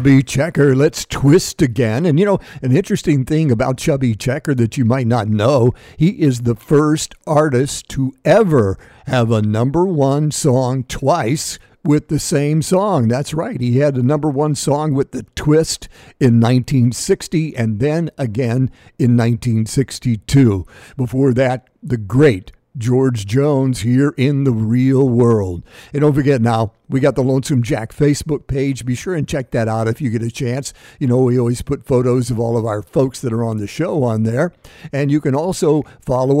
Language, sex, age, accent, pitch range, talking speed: English, male, 50-69, American, 120-145 Hz, 180 wpm